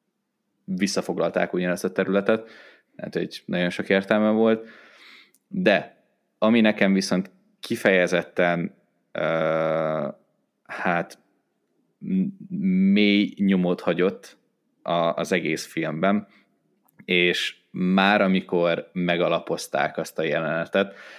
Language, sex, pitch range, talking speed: Hungarian, male, 90-110 Hz, 90 wpm